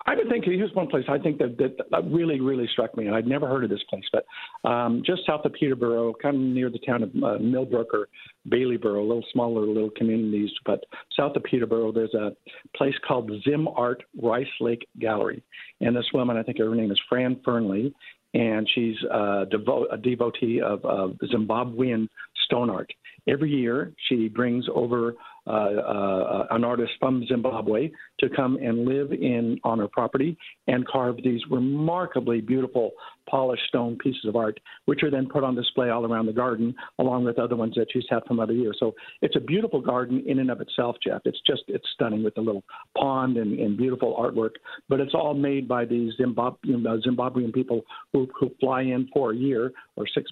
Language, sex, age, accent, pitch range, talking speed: English, male, 50-69, American, 115-130 Hz, 195 wpm